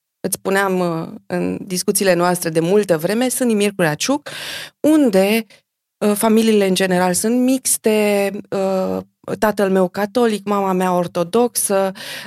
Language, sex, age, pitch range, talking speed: Romanian, female, 20-39, 170-220 Hz, 110 wpm